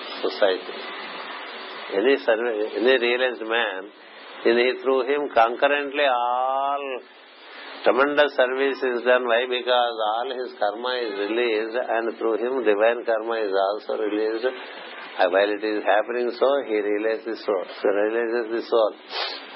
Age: 50-69